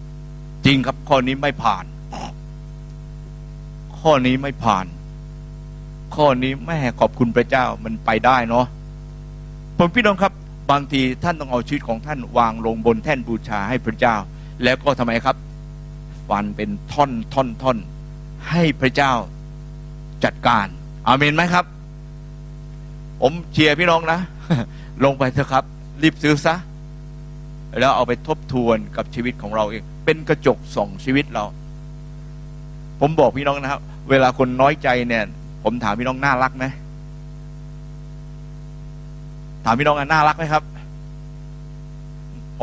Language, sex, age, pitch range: Thai, male, 60-79, 140-150 Hz